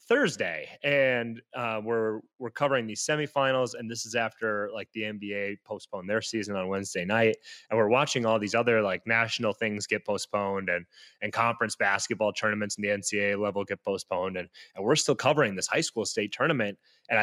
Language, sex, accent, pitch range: English, male, American, 105-130 Hz